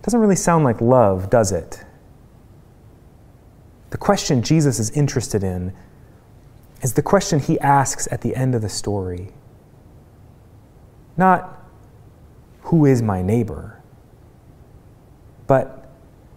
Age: 30-49